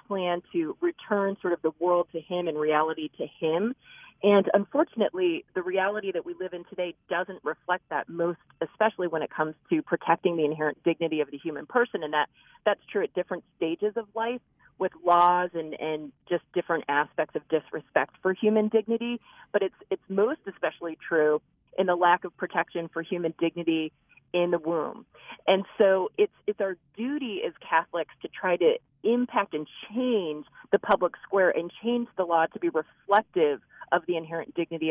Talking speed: 180 wpm